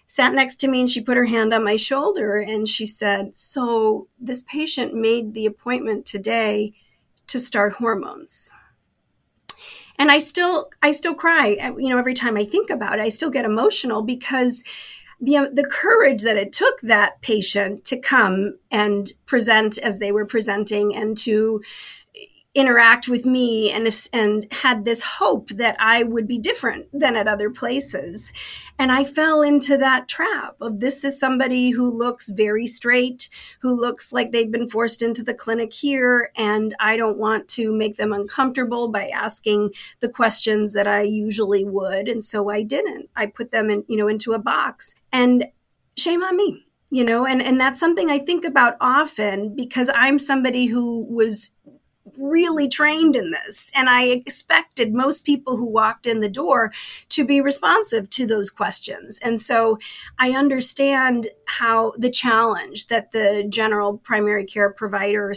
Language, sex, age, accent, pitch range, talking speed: English, female, 40-59, American, 215-265 Hz, 170 wpm